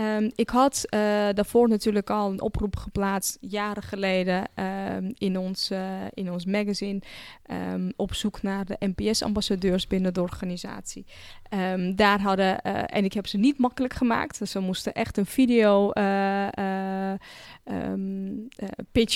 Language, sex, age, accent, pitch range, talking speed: Dutch, female, 10-29, Dutch, 195-220 Hz, 140 wpm